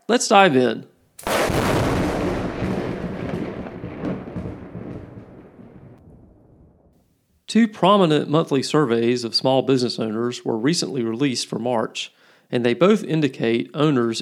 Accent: American